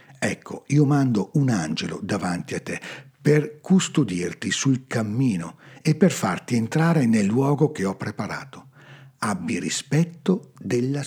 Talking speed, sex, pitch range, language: 130 wpm, male, 115-145 Hz, Italian